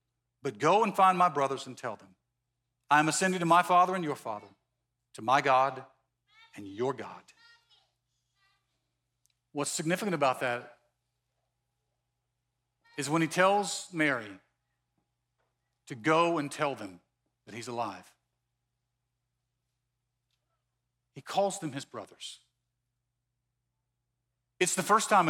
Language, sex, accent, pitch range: English, male, American, 120-165 Hz